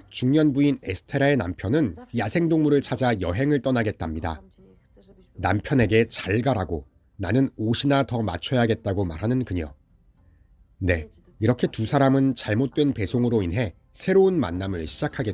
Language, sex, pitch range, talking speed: English, male, 90-135 Hz, 105 wpm